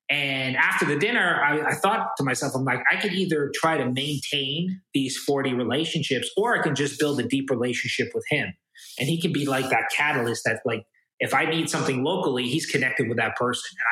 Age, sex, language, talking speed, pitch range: 30-49, male, English, 215 wpm, 125-150 Hz